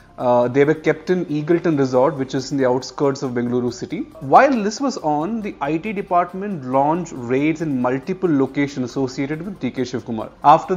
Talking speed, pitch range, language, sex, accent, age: 180 wpm, 130-175 Hz, Hindi, male, native, 30-49